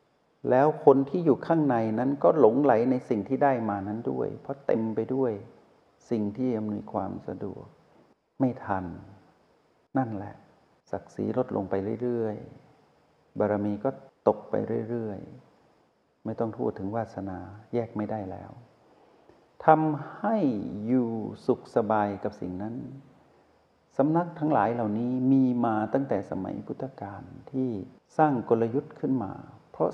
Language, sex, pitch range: Thai, male, 105-135 Hz